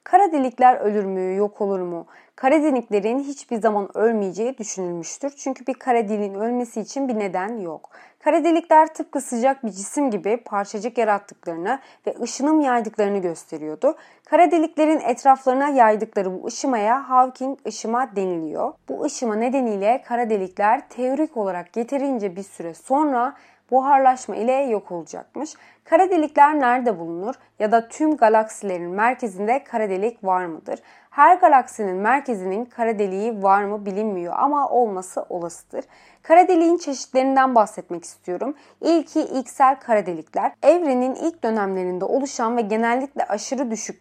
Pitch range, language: 205-270 Hz, Turkish